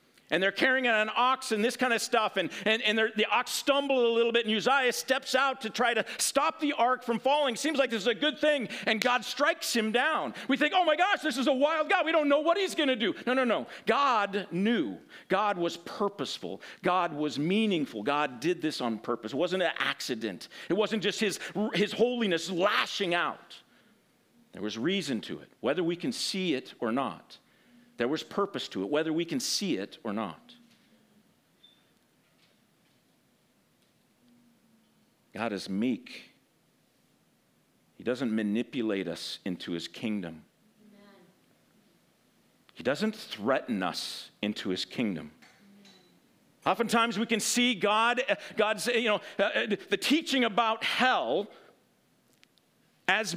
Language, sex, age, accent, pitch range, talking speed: English, male, 50-69, American, 195-255 Hz, 160 wpm